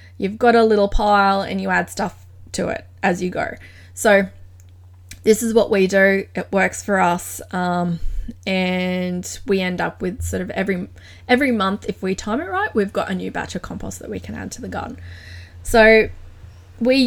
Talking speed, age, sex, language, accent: 195 wpm, 20-39, female, English, Australian